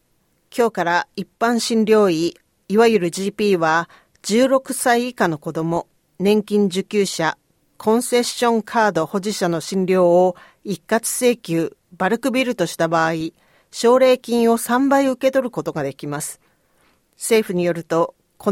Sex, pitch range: female, 175-230 Hz